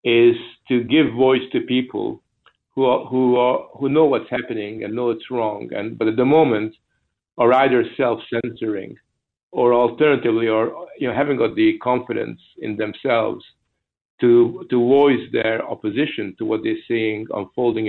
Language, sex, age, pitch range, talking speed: English, male, 50-69, 115-130 Hz, 160 wpm